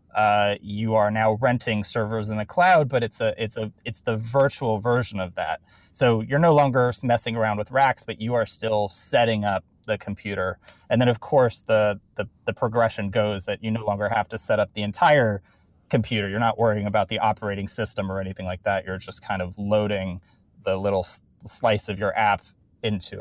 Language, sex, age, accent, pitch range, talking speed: English, male, 30-49, American, 105-125 Hz, 205 wpm